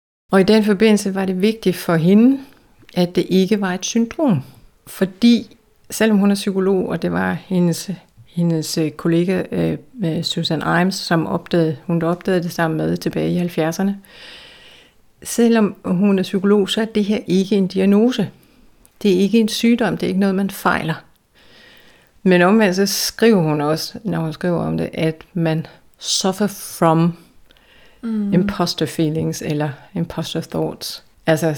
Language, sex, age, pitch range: Danish, female, 60-79, 165-200 Hz